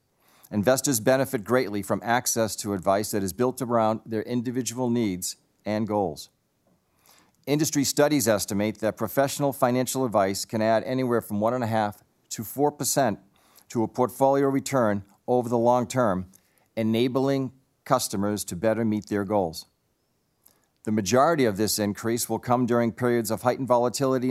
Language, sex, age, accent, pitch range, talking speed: English, male, 50-69, American, 105-130 Hz, 150 wpm